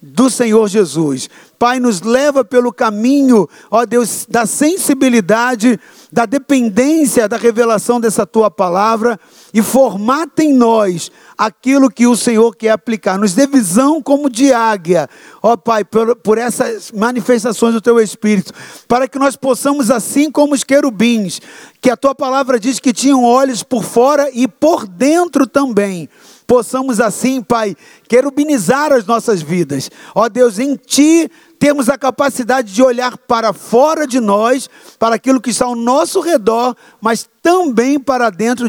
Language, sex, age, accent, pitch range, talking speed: Portuguese, male, 50-69, Brazilian, 220-265 Hz, 150 wpm